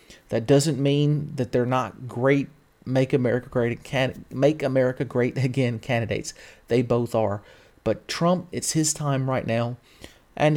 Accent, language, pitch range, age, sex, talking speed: American, English, 120-145 Hz, 30-49, male, 155 wpm